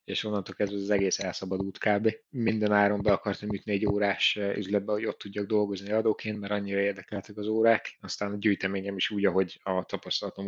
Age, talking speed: 30-49, 195 wpm